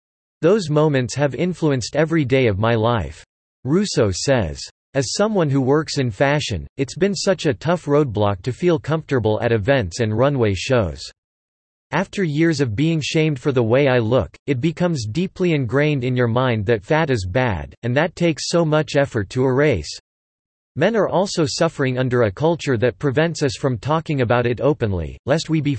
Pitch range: 115-155 Hz